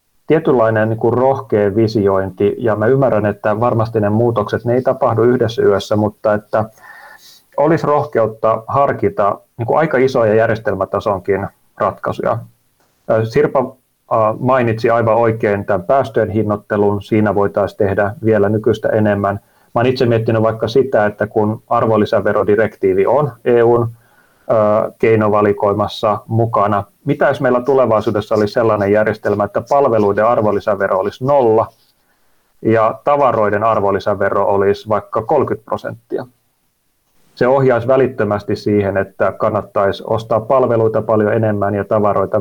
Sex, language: male, Finnish